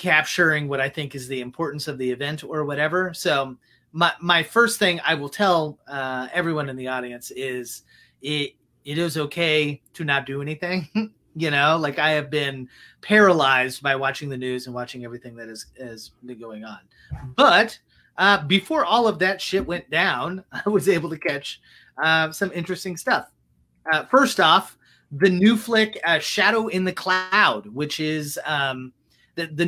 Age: 30-49